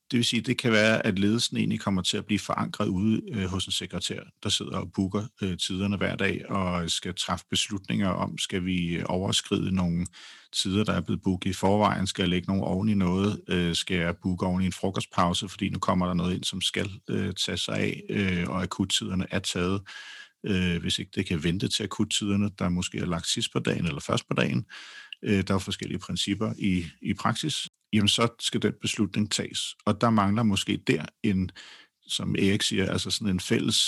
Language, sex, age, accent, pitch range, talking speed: Danish, male, 50-69, native, 95-110 Hz, 205 wpm